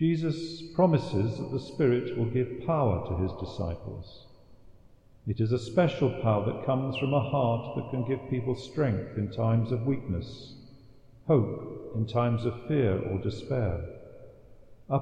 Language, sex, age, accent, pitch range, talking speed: English, male, 50-69, British, 110-135 Hz, 150 wpm